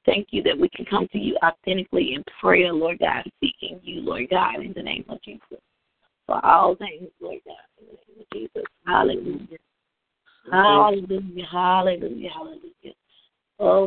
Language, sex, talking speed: English, female, 160 wpm